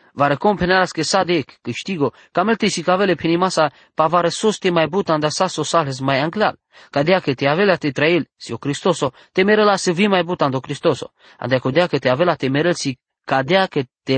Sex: male